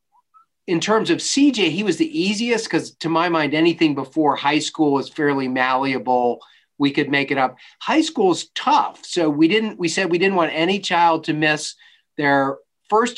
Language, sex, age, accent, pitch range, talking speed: English, male, 40-59, American, 145-225 Hz, 190 wpm